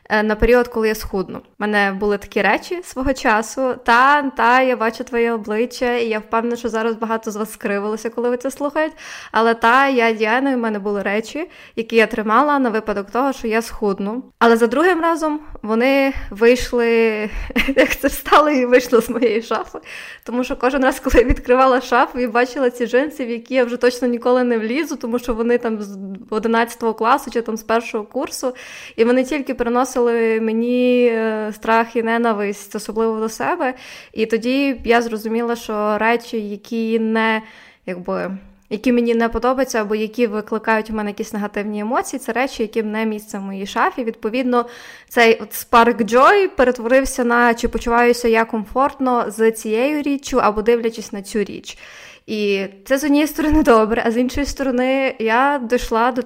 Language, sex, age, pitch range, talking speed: Ukrainian, female, 20-39, 220-255 Hz, 175 wpm